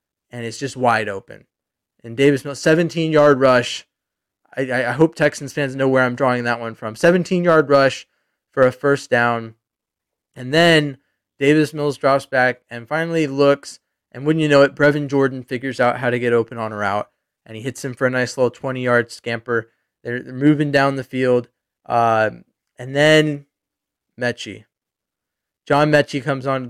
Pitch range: 120-145 Hz